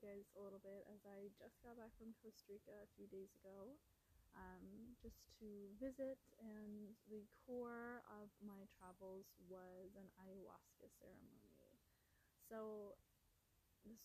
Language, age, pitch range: English, 20-39, 195-230 Hz